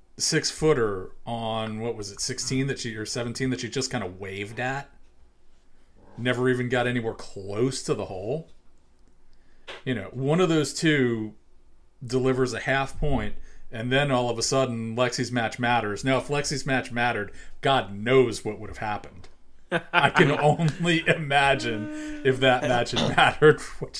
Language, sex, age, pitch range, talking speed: English, male, 40-59, 95-130 Hz, 165 wpm